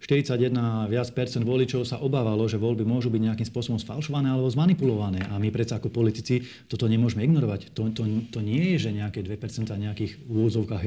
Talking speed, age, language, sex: 180 wpm, 40-59, Slovak, male